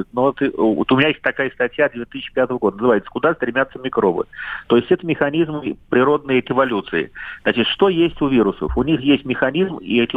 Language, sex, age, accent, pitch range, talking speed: Russian, male, 40-59, native, 120-150 Hz, 185 wpm